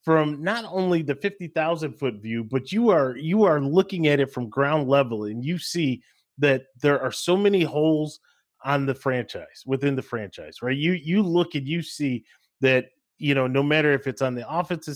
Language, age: English, 30-49